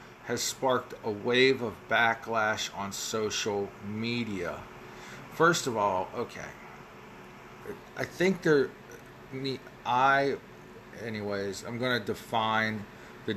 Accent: American